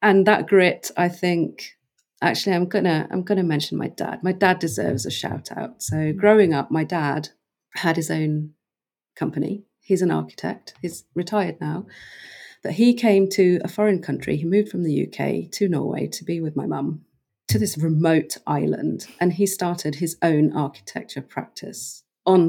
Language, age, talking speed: English, 40-59, 175 wpm